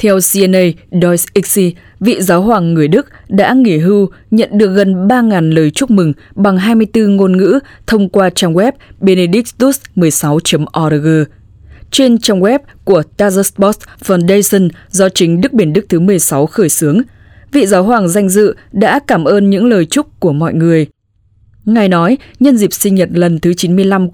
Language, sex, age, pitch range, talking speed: English, female, 10-29, 165-215 Hz, 160 wpm